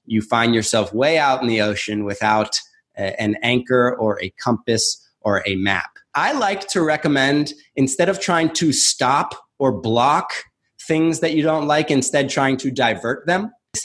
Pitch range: 125-150 Hz